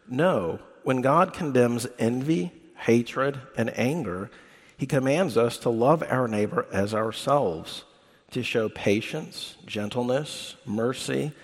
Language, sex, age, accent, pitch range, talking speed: English, male, 50-69, American, 110-135 Hz, 115 wpm